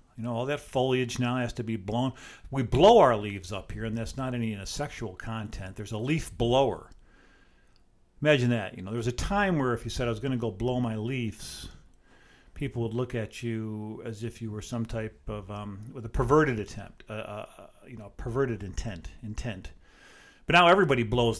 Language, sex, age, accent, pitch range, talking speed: English, male, 50-69, American, 110-135 Hz, 210 wpm